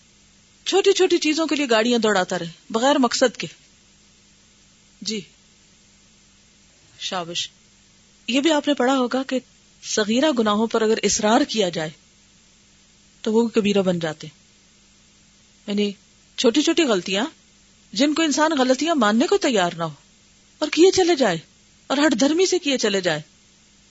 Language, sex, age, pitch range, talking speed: Urdu, female, 40-59, 200-280 Hz, 140 wpm